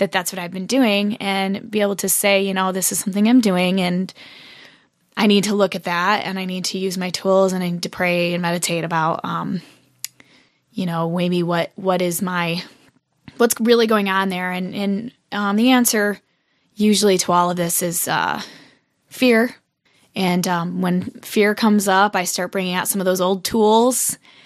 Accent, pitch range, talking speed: American, 180-210 Hz, 200 wpm